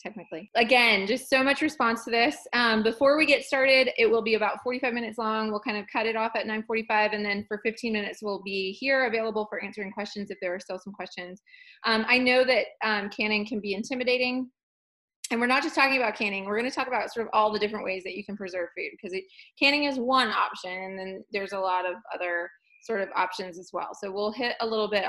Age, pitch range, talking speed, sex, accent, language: 20-39, 200-260 Hz, 240 wpm, female, American, English